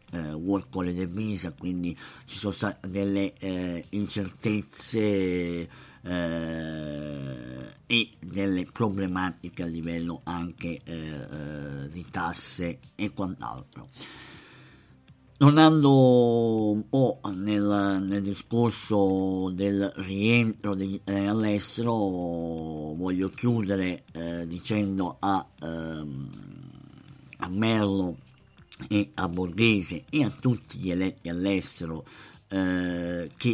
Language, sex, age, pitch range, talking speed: Italian, male, 50-69, 85-105 Hz, 95 wpm